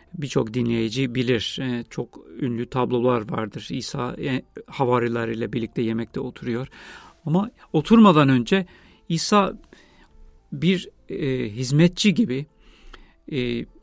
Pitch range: 125-170 Hz